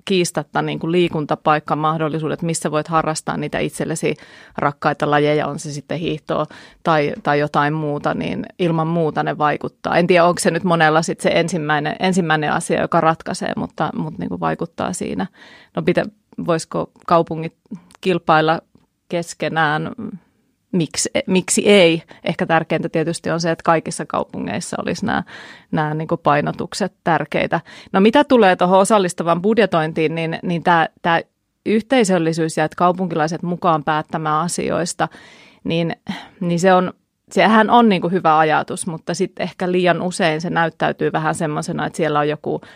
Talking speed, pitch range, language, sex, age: 145 wpm, 155-185 Hz, Finnish, female, 30-49